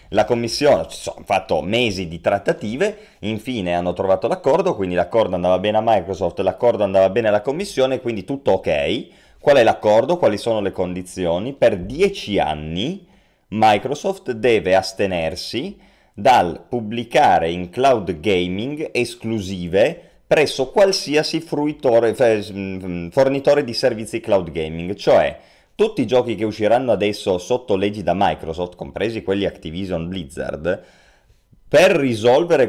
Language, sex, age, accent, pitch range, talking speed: Italian, male, 30-49, native, 95-130 Hz, 125 wpm